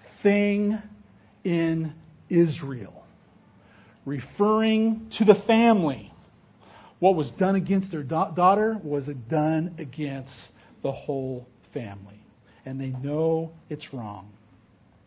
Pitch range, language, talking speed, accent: 125-175 Hz, English, 95 wpm, American